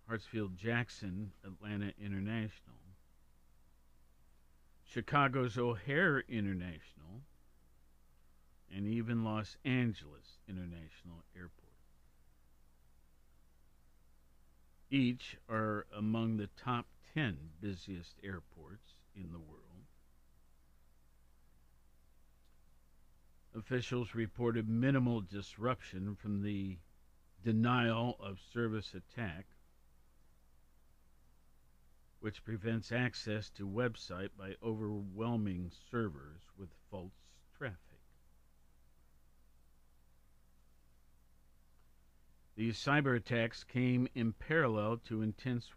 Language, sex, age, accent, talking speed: English, male, 50-69, American, 65 wpm